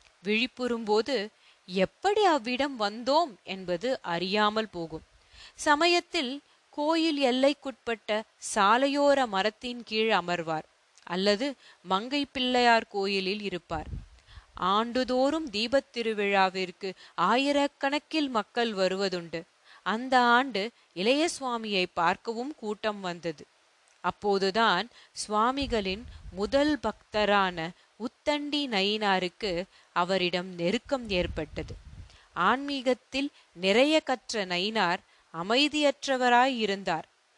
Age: 30-49